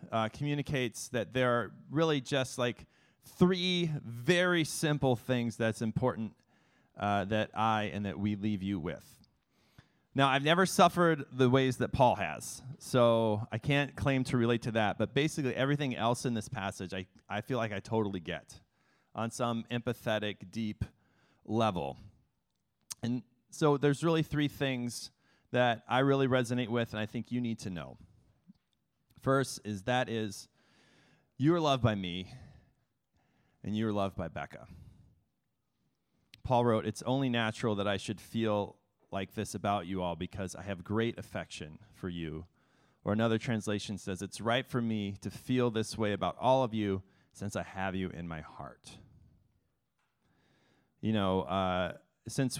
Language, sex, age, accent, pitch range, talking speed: English, male, 30-49, American, 100-130 Hz, 160 wpm